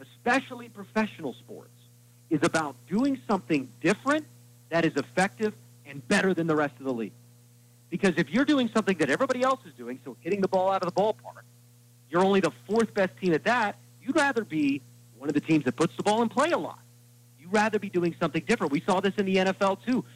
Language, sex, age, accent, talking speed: English, male, 40-59, American, 215 wpm